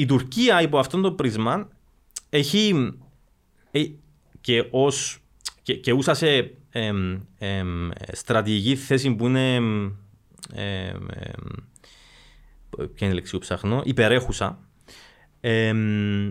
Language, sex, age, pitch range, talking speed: Greek, male, 30-49, 105-160 Hz, 75 wpm